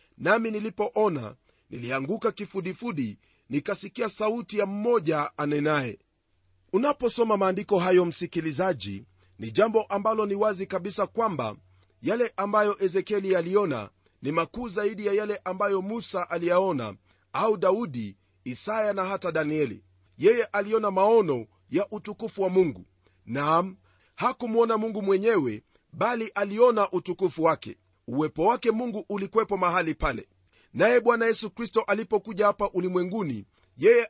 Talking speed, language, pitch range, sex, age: 120 wpm, Swahili, 150-220 Hz, male, 40-59